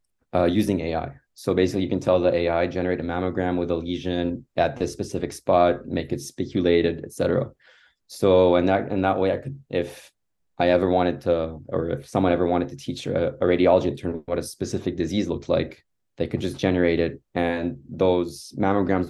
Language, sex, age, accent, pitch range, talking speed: English, male, 20-39, Canadian, 85-95 Hz, 195 wpm